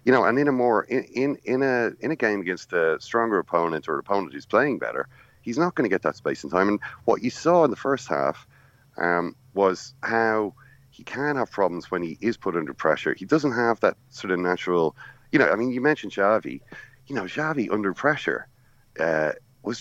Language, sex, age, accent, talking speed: English, male, 40-59, Irish, 225 wpm